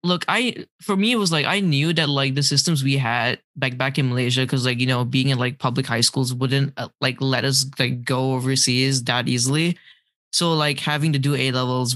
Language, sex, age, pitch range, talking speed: English, male, 10-29, 130-170 Hz, 230 wpm